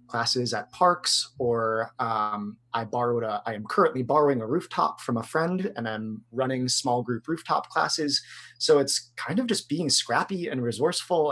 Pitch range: 120-145 Hz